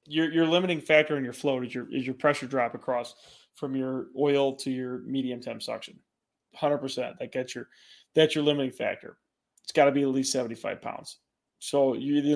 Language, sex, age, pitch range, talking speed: English, male, 20-39, 135-155 Hz, 205 wpm